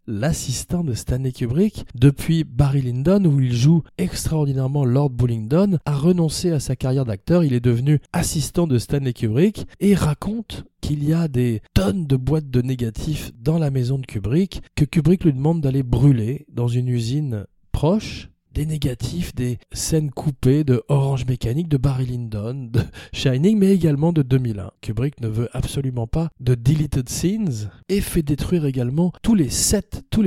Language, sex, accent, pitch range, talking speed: French, male, French, 125-165 Hz, 170 wpm